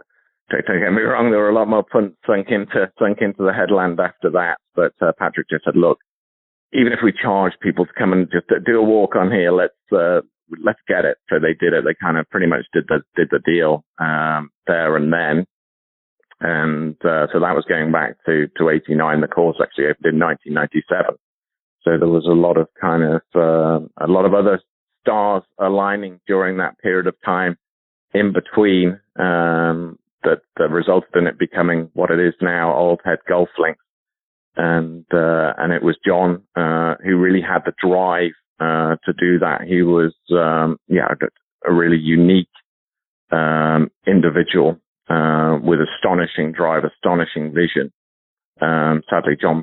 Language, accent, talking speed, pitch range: English, British, 180 wpm, 80-90 Hz